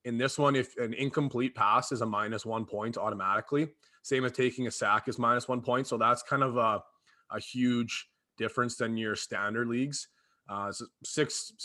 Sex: male